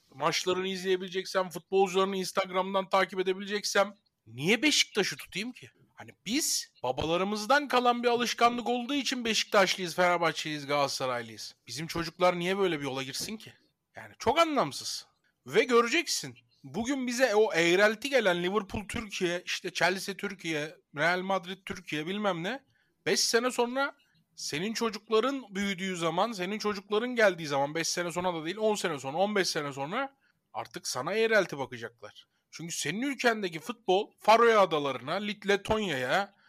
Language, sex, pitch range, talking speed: Turkish, male, 160-220 Hz, 135 wpm